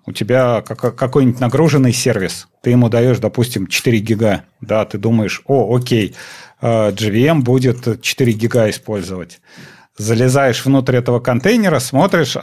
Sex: male